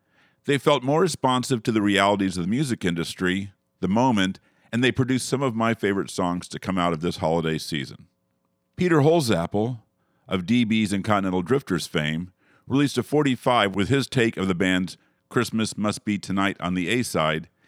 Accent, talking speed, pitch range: American, 175 wpm, 90-120 Hz